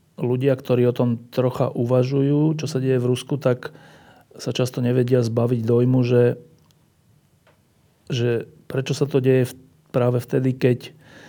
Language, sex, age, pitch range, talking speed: Slovak, male, 40-59, 120-130 Hz, 140 wpm